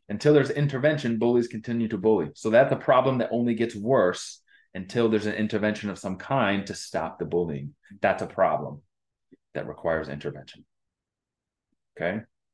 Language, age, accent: English, 30-49, American